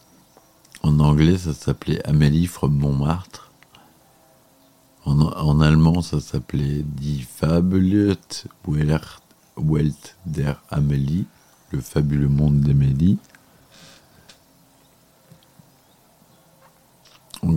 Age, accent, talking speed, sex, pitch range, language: 50-69, French, 75 wpm, male, 70-85 Hz, French